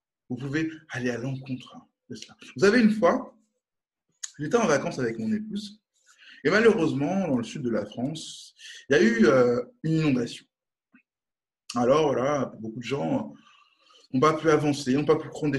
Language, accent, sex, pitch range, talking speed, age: French, French, male, 140-225 Hz, 175 wpm, 20-39